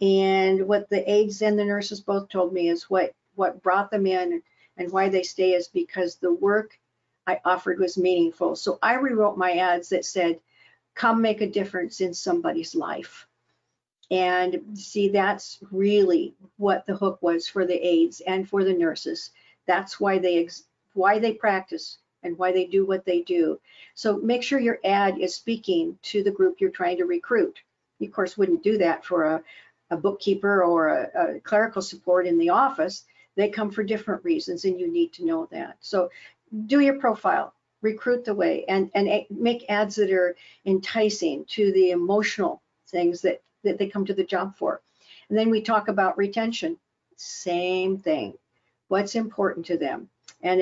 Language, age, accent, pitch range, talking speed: English, 50-69, American, 180-220 Hz, 180 wpm